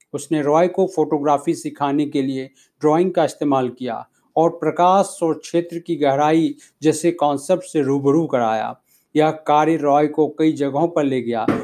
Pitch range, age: 150-175 Hz, 50-69